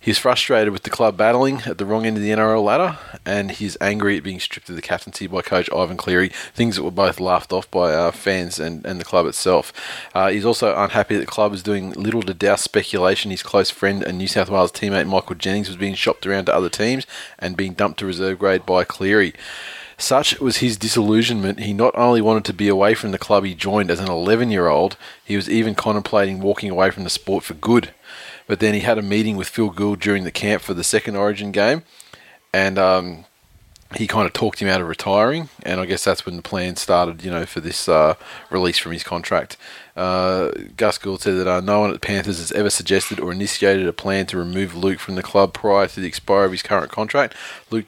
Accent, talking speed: Australian, 235 wpm